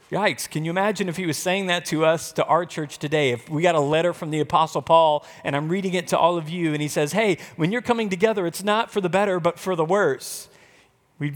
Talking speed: 265 wpm